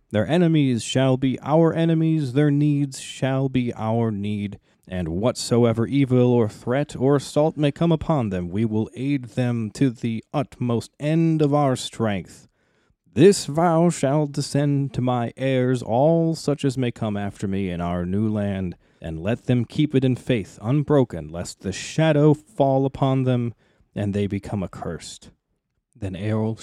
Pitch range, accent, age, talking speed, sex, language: 110-145 Hz, American, 30-49, 160 wpm, male, English